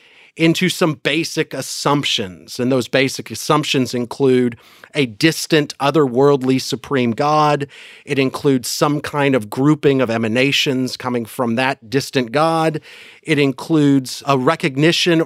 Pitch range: 115-150 Hz